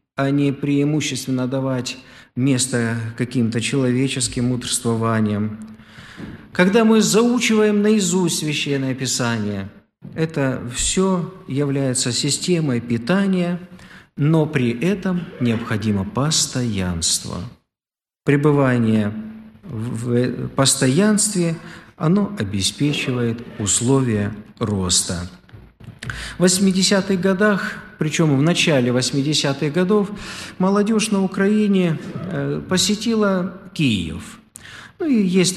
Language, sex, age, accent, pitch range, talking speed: Russian, male, 50-69, native, 125-185 Hz, 80 wpm